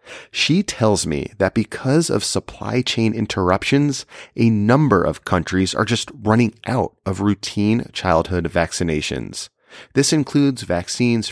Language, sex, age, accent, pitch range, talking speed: English, male, 30-49, American, 95-125 Hz, 125 wpm